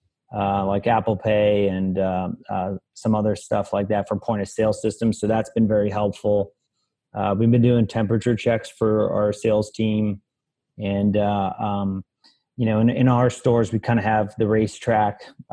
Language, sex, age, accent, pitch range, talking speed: English, male, 30-49, American, 105-120 Hz, 180 wpm